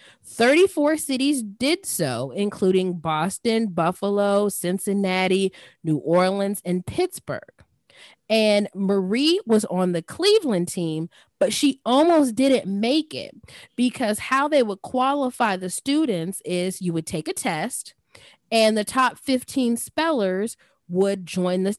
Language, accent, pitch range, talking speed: English, American, 180-245 Hz, 125 wpm